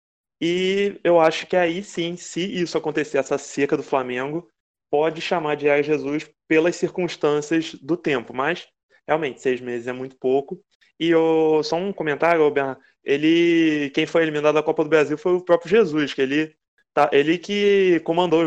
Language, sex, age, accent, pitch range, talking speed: Portuguese, male, 20-39, Brazilian, 135-165 Hz, 165 wpm